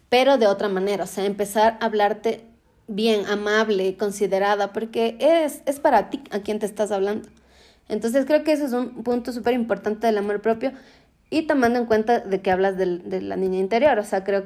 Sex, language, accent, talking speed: female, Spanish, Mexican, 205 wpm